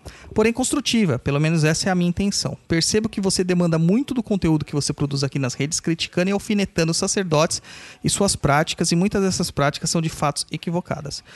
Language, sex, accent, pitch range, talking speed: Portuguese, male, Brazilian, 140-175 Hz, 200 wpm